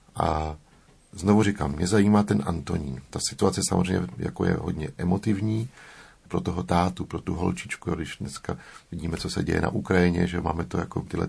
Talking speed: 175 wpm